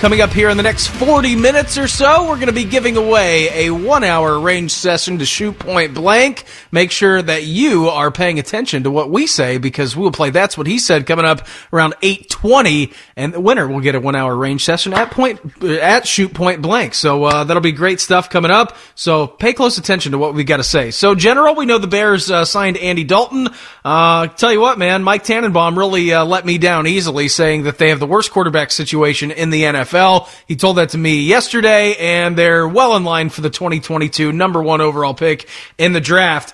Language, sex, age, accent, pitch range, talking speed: English, male, 30-49, American, 155-210 Hz, 225 wpm